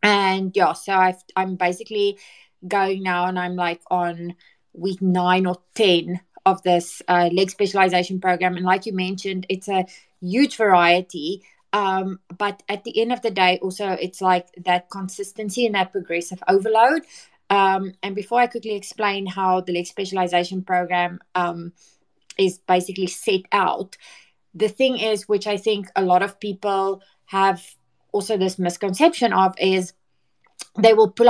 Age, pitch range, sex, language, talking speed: 20-39, 185-210 Hz, female, English, 155 wpm